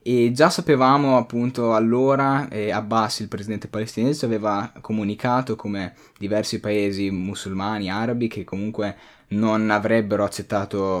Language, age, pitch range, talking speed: Italian, 10-29, 95-115 Hz, 120 wpm